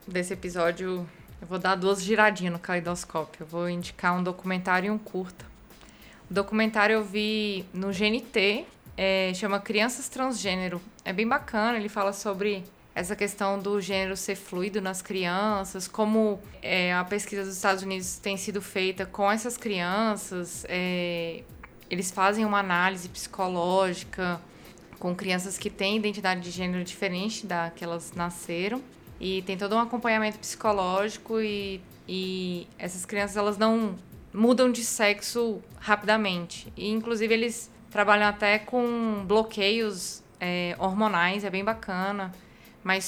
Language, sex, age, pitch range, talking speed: Portuguese, female, 20-39, 185-215 Hz, 140 wpm